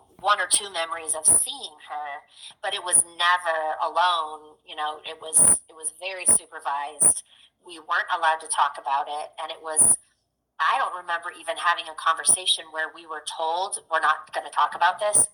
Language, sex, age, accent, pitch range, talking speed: English, female, 30-49, American, 155-175 Hz, 190 wpm